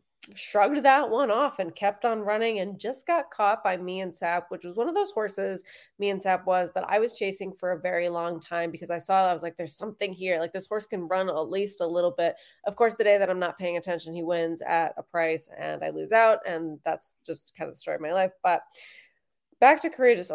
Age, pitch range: 20-39, 170-205 Hz